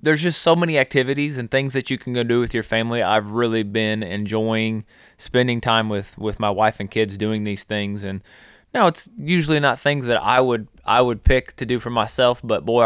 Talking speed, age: 225 wpm, 20-39